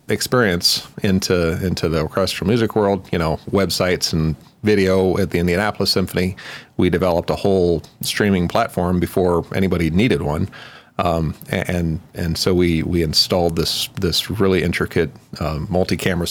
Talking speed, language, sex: 145 wpm, English, male